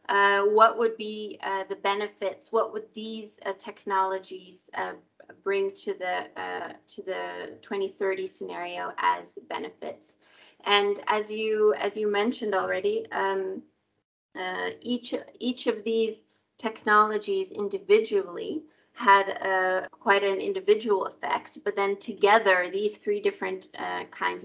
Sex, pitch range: female, 190-225 Hz